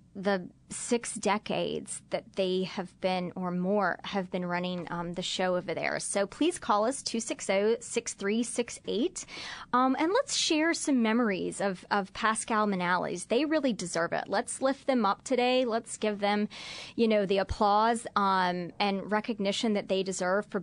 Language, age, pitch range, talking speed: English, 30-49, 190-235 Hz, 165 wpm